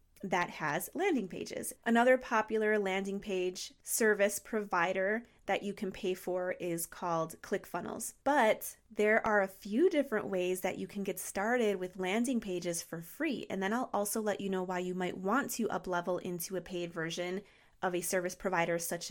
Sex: female